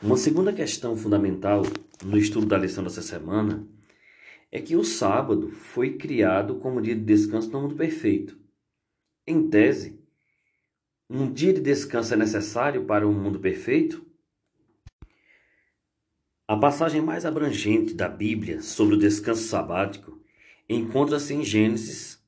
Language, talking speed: Portuguese, 130 wpm